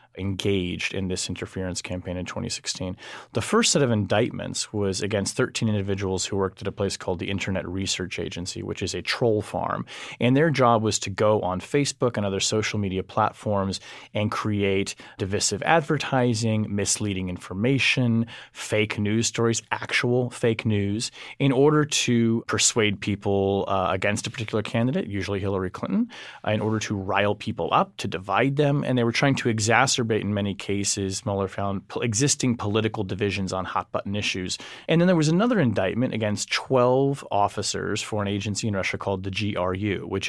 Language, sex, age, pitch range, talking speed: English, male, 30-49, 95-115 Hz, 170 wpm